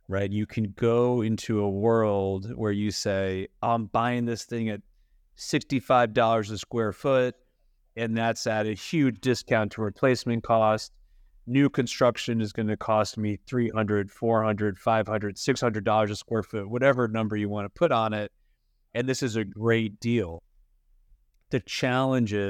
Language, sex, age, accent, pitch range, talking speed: English, male, 30-49, American, 100-115 Hz, 155 wpm